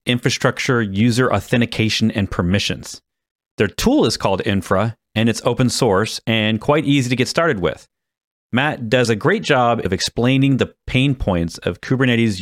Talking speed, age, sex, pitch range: 160 wpm, 40-59, male, 105-130 Hz